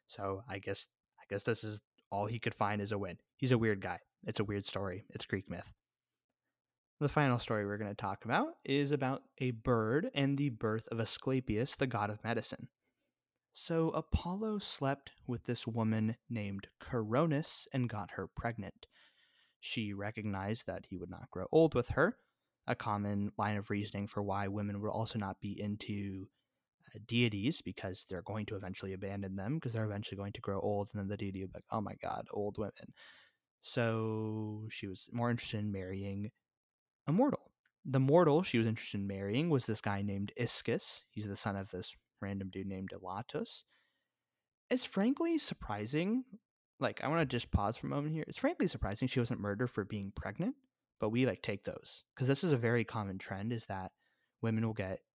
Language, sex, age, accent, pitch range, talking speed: English, male, 20-39, American, 100-130 Hz, 195 wpm